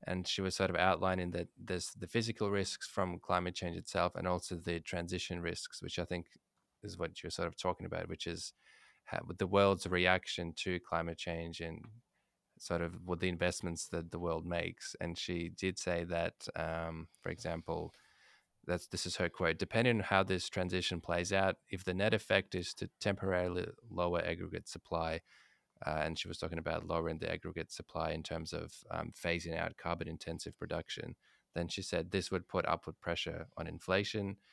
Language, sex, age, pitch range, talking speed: English, male, 20-39, 85-95 Hz, 185 wpm